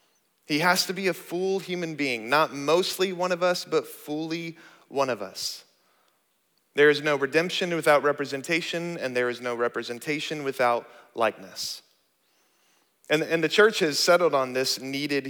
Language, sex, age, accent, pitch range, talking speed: English, male, 30-49, American, 125-155 Hz, 155 wpm